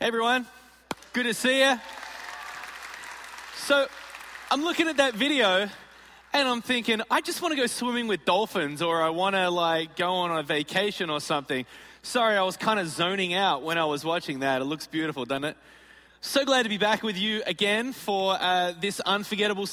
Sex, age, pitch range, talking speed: male, 20-39, 160-215 Hz, 185 wpm